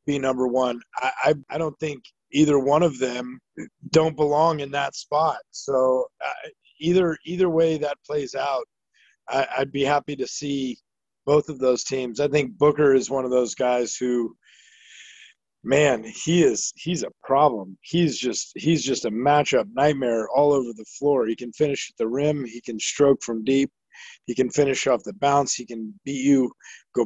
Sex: male